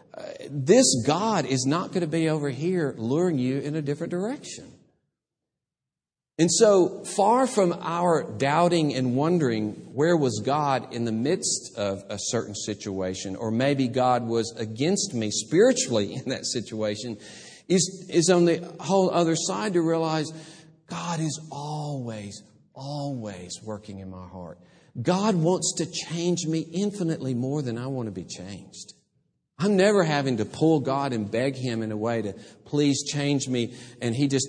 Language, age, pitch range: English, 50-69, 110-165 Hz